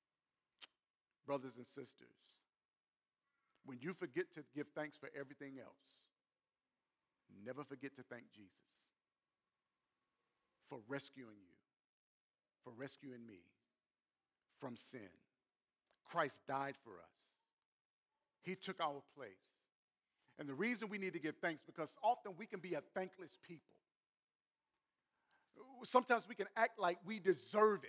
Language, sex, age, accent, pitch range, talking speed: English, male, 50-69, American, 140-215 Hz, 120 wpm